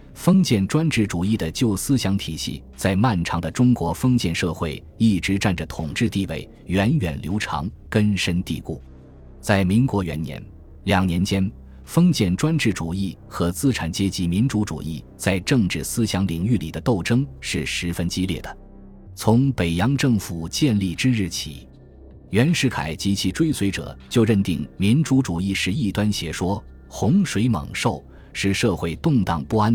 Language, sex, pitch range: Chinese, male, 85-110 Hz